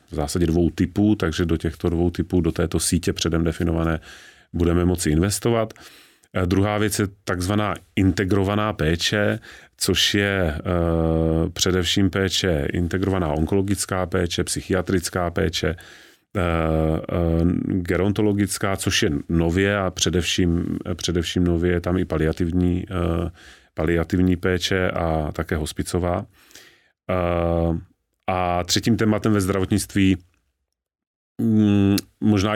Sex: male